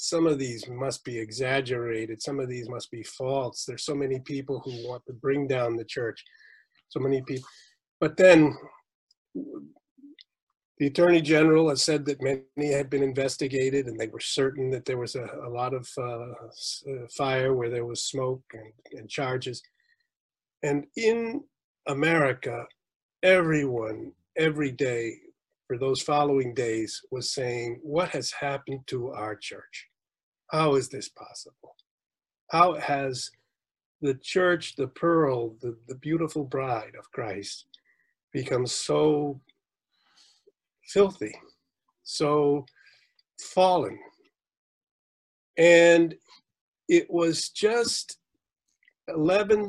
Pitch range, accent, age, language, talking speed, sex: 125-160 Hz, American, 40-59, English, 125 wpm, male